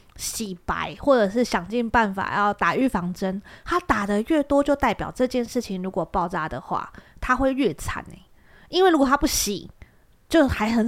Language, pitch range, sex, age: Chinese, 185-260 Hz, female, 20-39